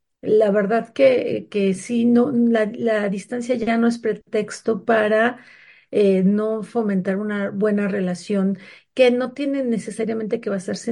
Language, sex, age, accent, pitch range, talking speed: Spanish, female, 40-59, Mexican, 200-235 Hz, 145 wpm